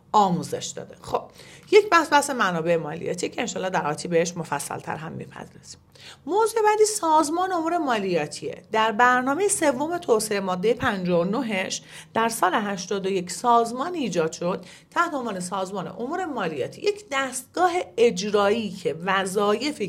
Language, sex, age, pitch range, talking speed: Persian, female, 40-59, 180-260 Hz, 135 wpm